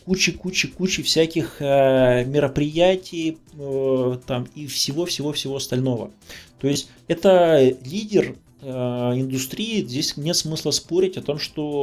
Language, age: Russian, 20-39